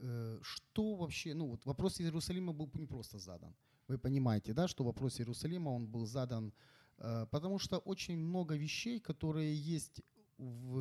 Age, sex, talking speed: 30-49, male, 155 wpm